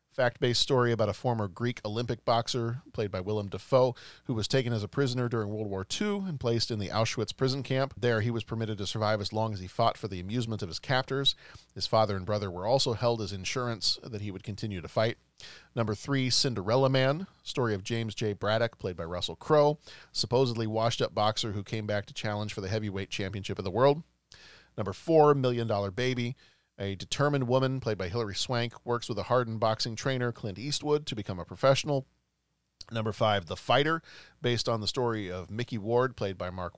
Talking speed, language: 205 wpm, English